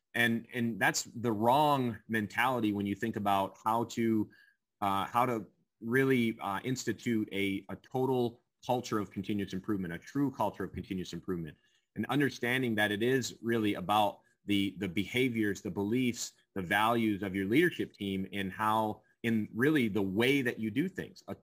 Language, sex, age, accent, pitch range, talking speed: English, male, 30-49, American, 100-120 Hz, 170 wpm